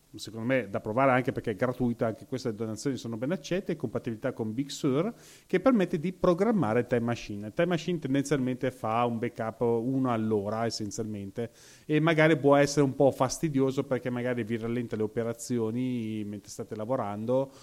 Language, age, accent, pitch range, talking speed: Italian, 30-49, native, 115-145 Hz, 170 wpm